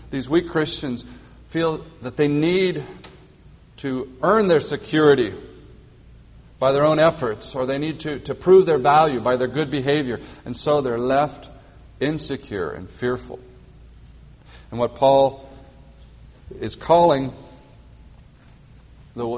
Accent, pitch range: American, 120-155 Hz